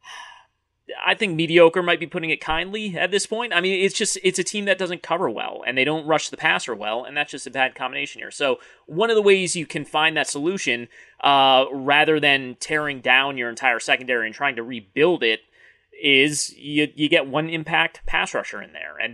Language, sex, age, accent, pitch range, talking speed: English, male, 30-49, American, 125-170 Hz, 220 wpm